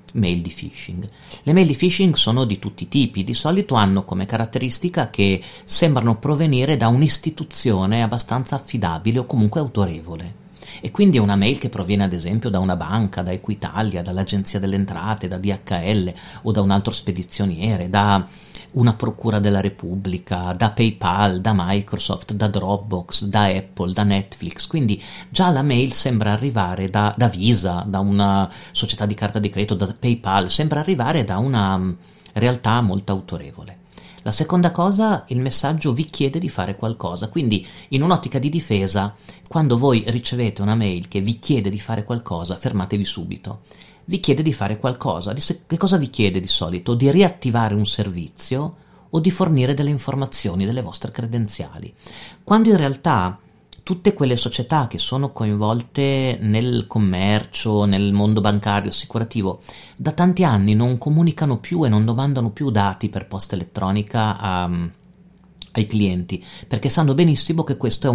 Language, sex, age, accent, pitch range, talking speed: Italian, male, 40-59, native, 100-135 Hz, 160 wpm